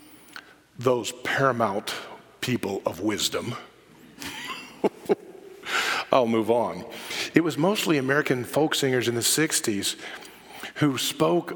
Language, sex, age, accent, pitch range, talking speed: English, male, 50-69, American, 130-175 Hz, 100 wpm